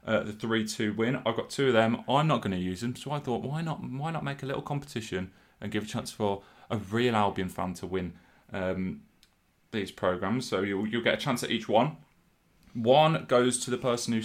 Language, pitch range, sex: English, 95-120 Hz, male